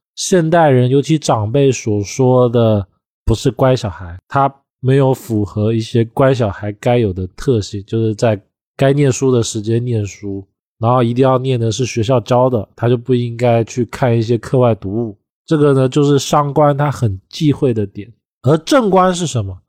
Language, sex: Chinese, male